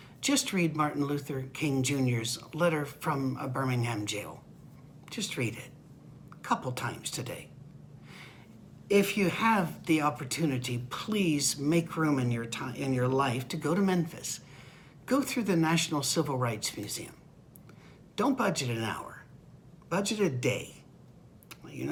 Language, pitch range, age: English, 130-165 Hz, 60-79